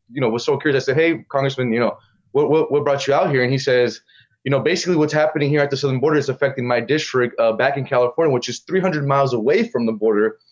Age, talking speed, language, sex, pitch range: 20-39, 270 wpm, English, male, 130-155 Hz